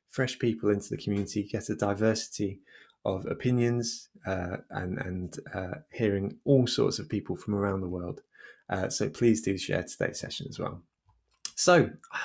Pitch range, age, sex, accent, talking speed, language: 100-125 Hz, 20-39, male, British, 165 wpm, English